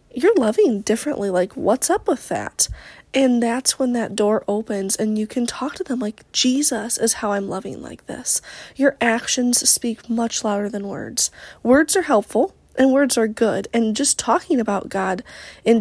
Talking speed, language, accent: 180 wpm, English, American